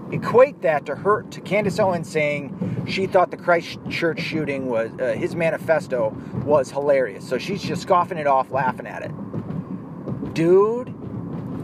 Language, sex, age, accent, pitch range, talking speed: English, male, 30-49, American, 145-195 Hz, 150 wpm